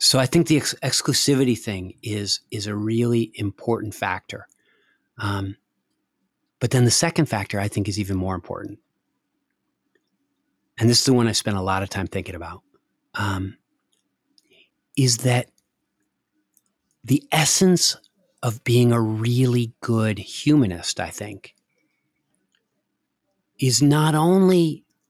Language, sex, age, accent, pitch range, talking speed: English, male, 30-49, American, 110-140 Hz, 130 wpm